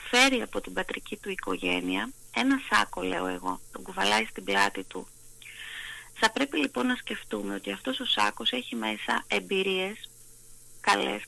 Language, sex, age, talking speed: Greek, female, 30-49, 150 wpm